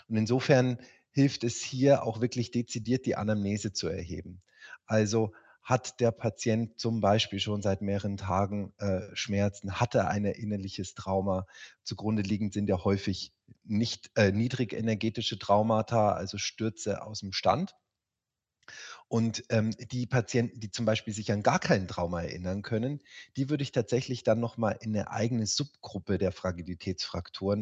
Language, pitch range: German, 100-120 Hz